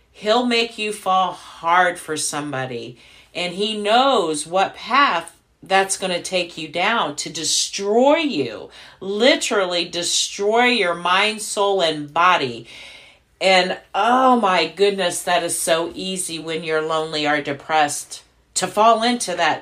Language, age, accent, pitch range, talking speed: English, 50-69, American, 155-195 Hz, 140 wpm